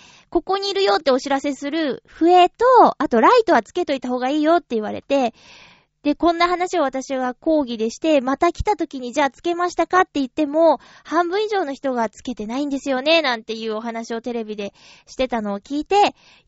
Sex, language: female, Japanese